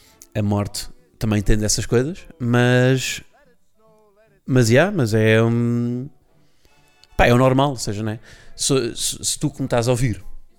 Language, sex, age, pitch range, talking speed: Portuguese, male, 30-49, 115-155 Hz, 160 wpm